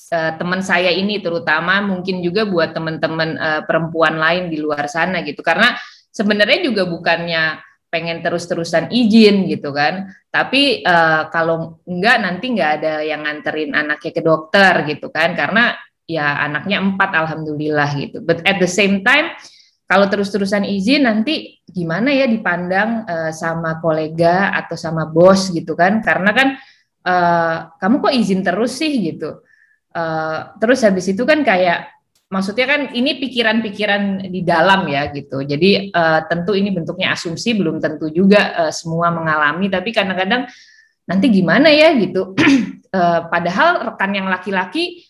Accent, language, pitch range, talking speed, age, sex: native, Indonesian, 160-215 Hz, 145 wpm, 20-39, female